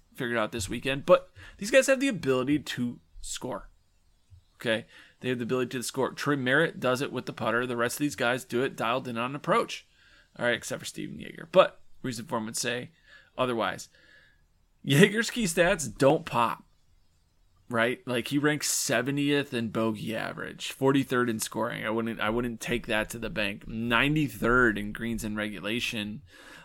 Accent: American